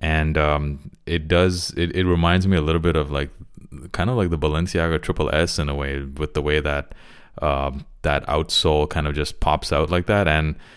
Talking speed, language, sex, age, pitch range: 210 wpm, English, male, 20-39, 75-90 Hz